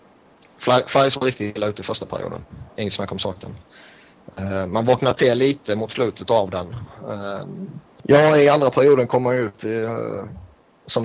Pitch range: 100-115 Hz